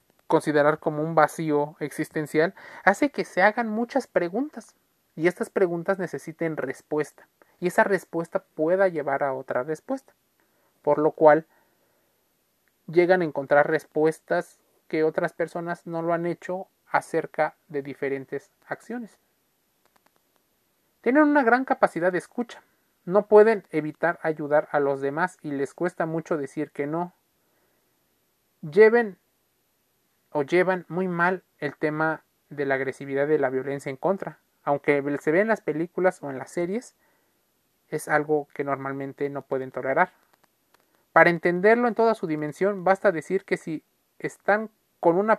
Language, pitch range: Spanish, 150-185 Hz